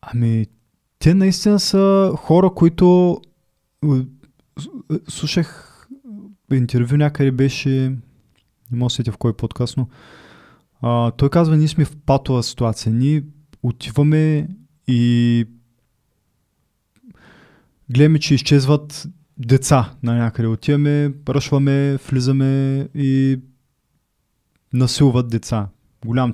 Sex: male